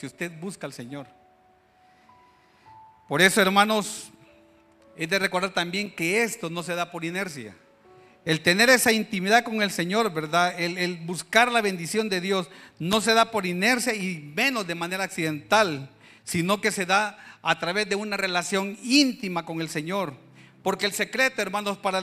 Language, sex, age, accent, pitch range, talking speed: Spanish, male, 40-59, Mexican, 165-215 Hz, 170 wpm